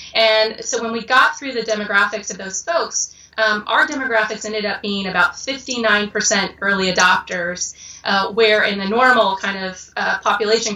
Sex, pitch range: female, 190-220 Hz